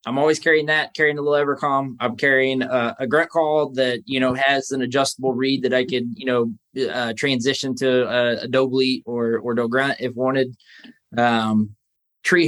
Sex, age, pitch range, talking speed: male, 20-39, 120-145 Hz, 190 wpm